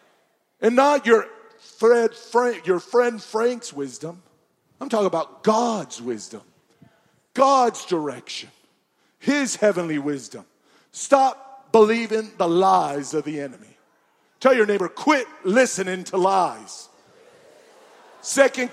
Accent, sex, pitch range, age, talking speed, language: American, male, 200-255 Hz, 40-59, 110 wpm, English